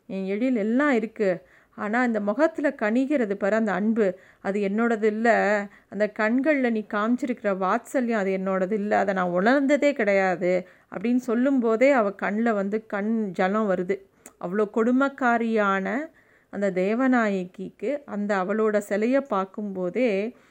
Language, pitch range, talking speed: Tamil, 200-240 Hz, 125 wpm